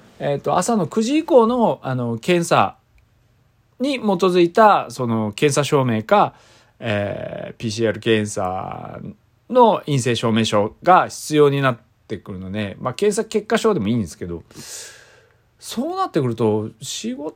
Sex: male